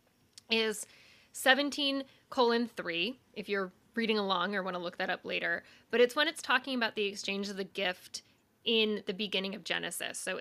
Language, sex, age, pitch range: English, female, 10-29, 200-260 Hz